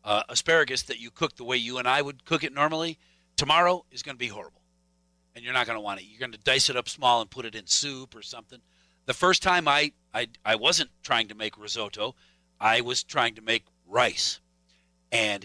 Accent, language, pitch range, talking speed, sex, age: American, English, 110-155 Hz, 230 wpm, male, 50-69